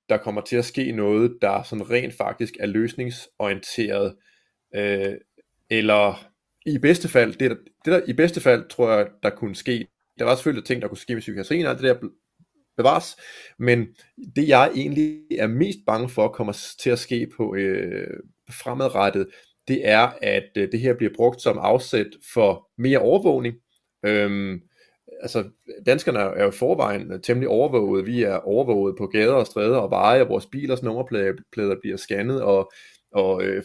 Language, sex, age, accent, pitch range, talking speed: Danish, male, 30-49, native, 100-130 Hz, 175 wpm